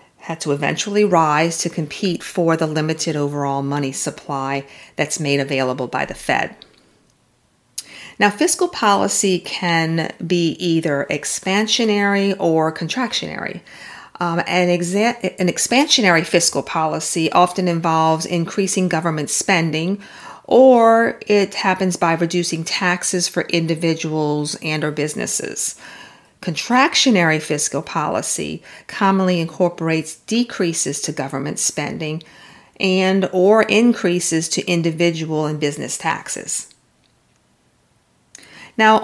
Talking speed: 105 wpm